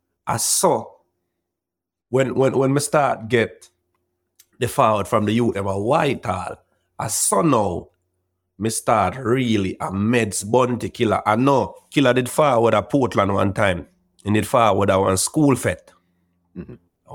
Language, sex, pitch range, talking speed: English, male, 100-135 Hz, 155 wpm